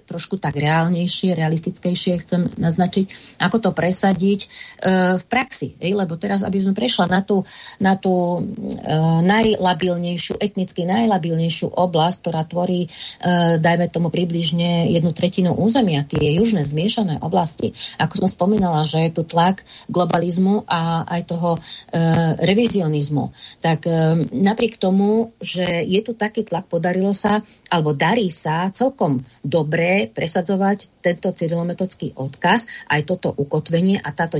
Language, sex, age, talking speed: Slovak, female, 30-49, 135 wpm